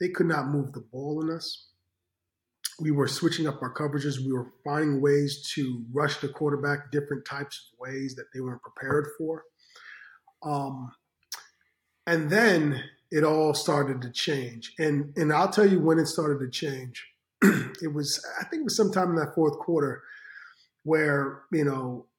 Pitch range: 140-180 Hz